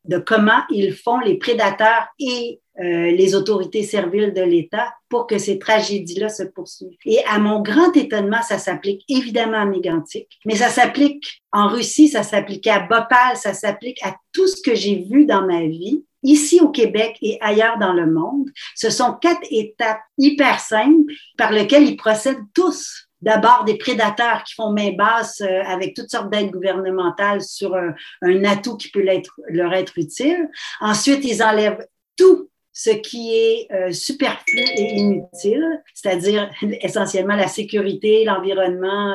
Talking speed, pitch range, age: 160 wpm, 195-245 Hz, 40-59